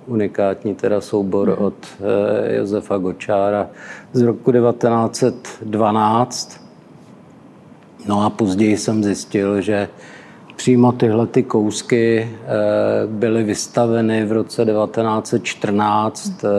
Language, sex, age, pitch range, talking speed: Czech, male, 50-69, 100-115 Hz, 85 wpm